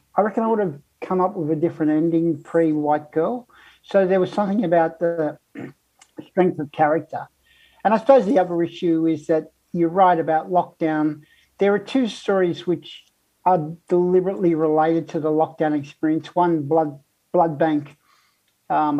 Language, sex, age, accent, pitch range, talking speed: English, male, 60-79, Australian, 155-180 Hz, 165 wpm